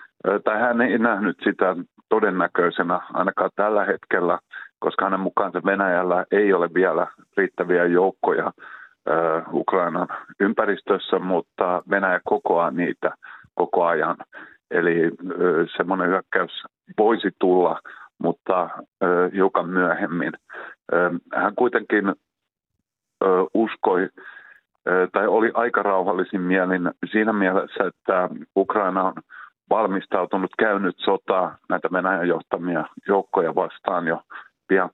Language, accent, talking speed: Finnish, native, 100 wpm